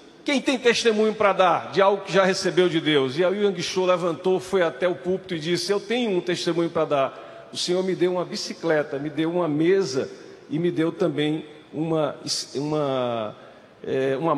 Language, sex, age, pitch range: Portuguese, male, 50-69, 175-225 Hz